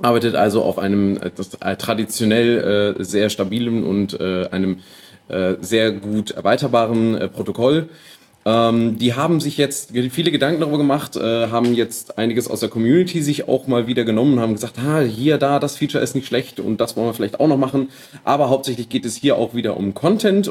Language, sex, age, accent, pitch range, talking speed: German, male, 30-49, German, 105-140 Hz, 195 wpm